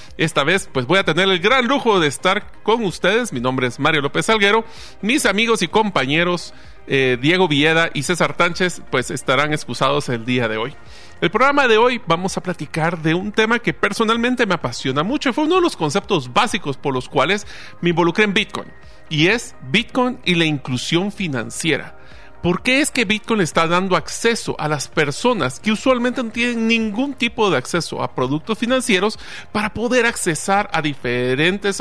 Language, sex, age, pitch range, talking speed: Spanish, male, 40-59, 145-210 Hz, 185 wpm